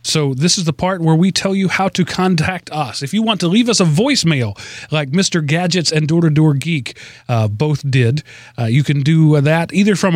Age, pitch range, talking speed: 30-49, 125-180 Hz, 220 wpm